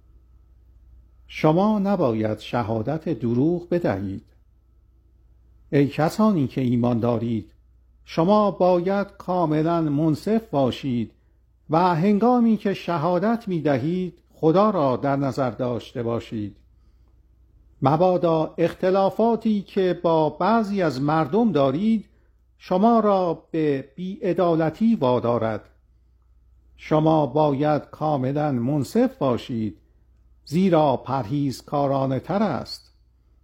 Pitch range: 115-180 Hz